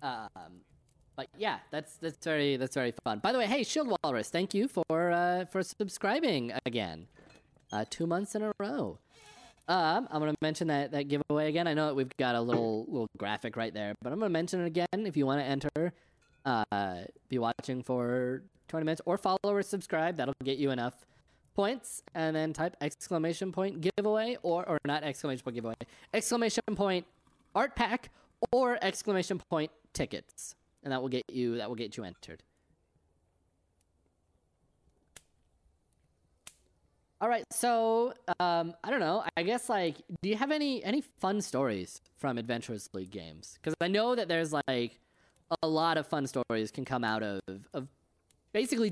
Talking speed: 175 wpm